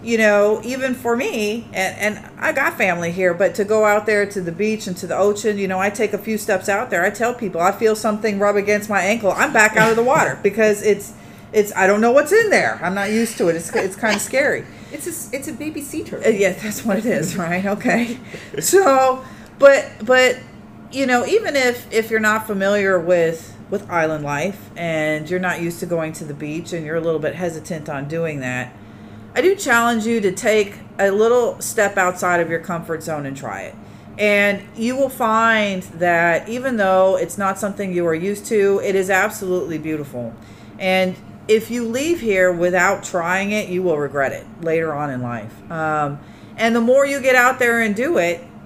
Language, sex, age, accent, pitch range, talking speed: English, female, 40-59, American, 175-225 Hz, 215 wpm